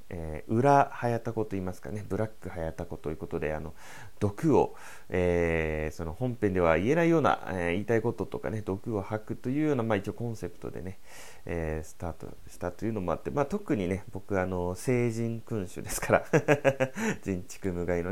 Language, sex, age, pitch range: Japanese, male, 30-49, 85-110 Hz